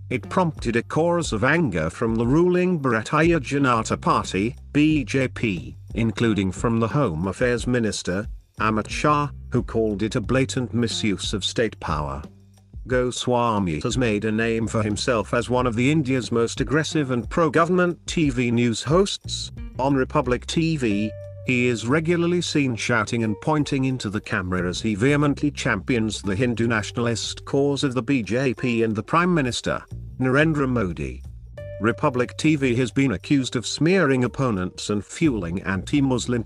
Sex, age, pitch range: male, 50-69, 105-135 Hz